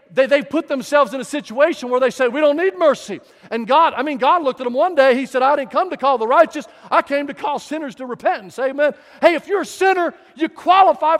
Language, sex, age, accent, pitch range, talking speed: English, male, 50-69, American, 255-335 Hz, 255 wpm